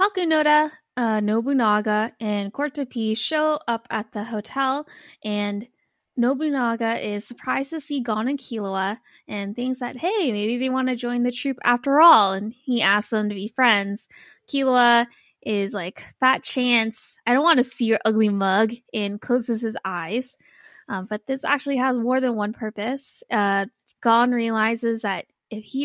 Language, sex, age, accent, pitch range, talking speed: English, female, 20-39, American, 210-265 Hz, 165 wpm